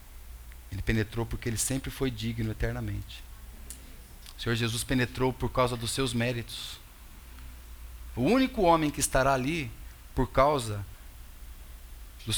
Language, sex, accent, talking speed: Portuguese, male, Brazilian, 125 wpm